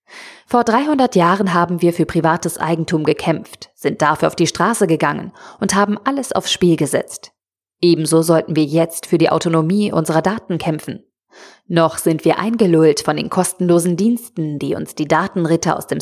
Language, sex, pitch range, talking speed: German, female, 165-205 Hz, 170 wpm